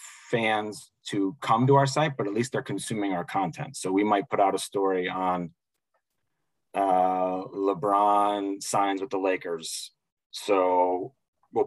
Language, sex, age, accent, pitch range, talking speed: English, male, 30-49, American, 95-120 Hz, 150 wpm